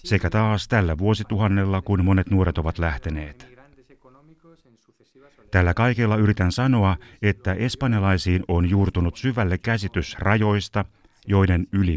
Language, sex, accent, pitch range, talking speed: Finnish, male, native, 90-115 Hz, 110 wpm